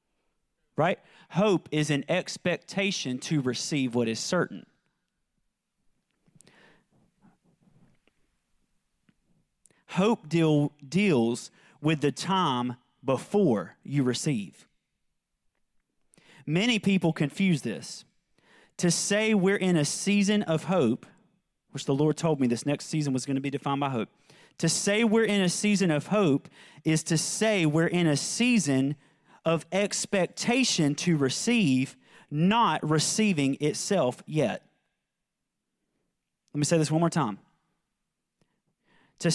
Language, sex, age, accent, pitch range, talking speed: English, male, 30-49, American, 145-195 Hz, 115 wpm